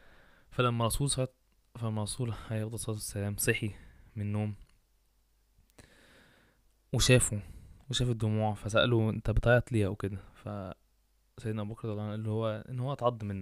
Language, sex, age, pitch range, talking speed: Arabic, male, 20-39, 100-115 Hz, 135 wpm